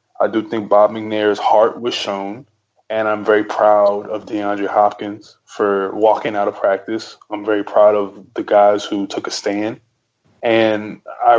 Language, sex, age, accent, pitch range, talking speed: English, male, 20-39, American, 105-115 Hz, 170 wpm